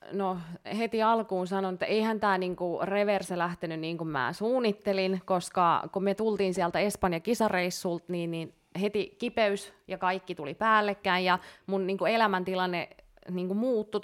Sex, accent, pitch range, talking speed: female, native, 180-205 Hz, 145 wpm